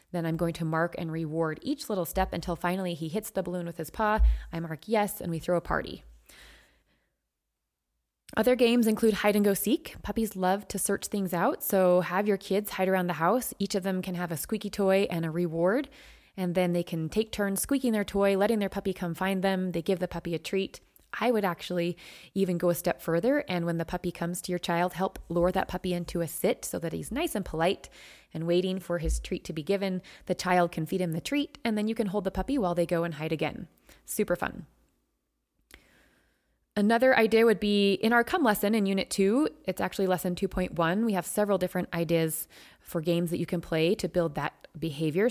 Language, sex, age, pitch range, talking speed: English, female, 20-39, 170-205 Hz, 220 wpm